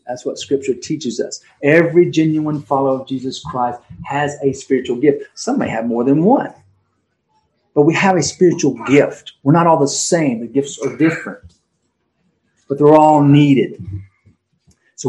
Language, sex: English, male